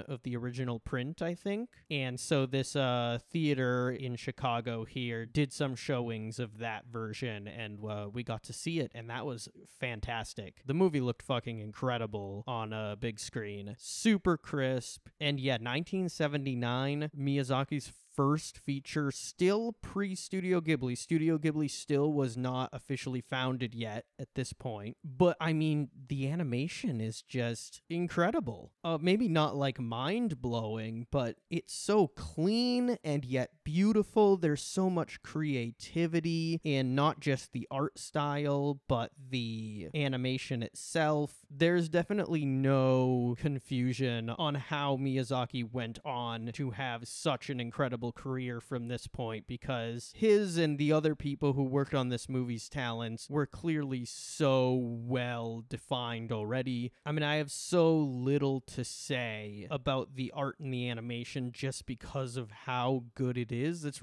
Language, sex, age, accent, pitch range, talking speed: English, male, 20-39, American, 120-150 Hz, 145 wpm